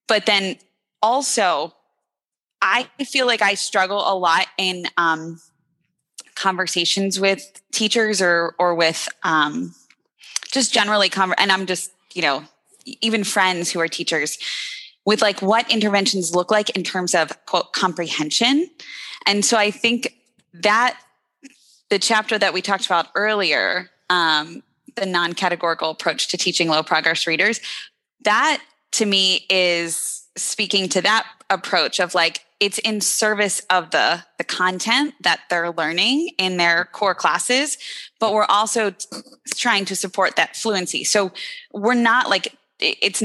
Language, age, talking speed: English, 20-39, 140 wpm